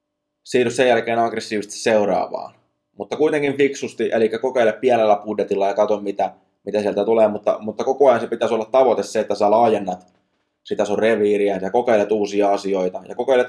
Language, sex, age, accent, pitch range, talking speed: Finnish, male, 20-39, native, 100-110 Hz, 175 wpm